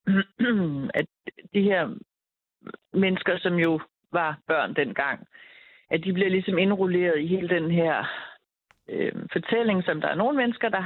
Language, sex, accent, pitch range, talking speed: Danish, female, native, 155-190 Hz, 145 wpm